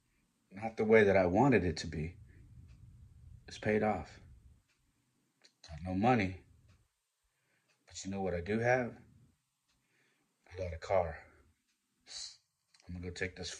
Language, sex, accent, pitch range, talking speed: English, male, American, 85-95 Hz, 135 wpm